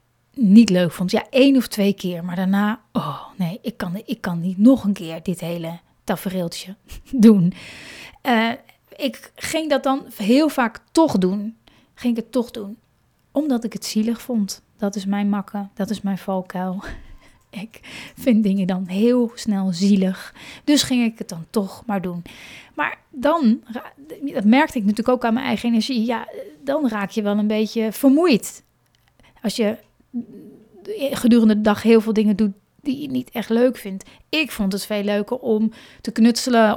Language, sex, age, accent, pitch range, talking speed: Dutch, female, 30-49, Dutch, 200-235 Hz, 175 wpm